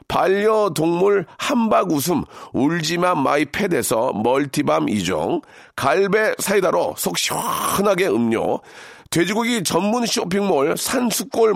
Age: 40-59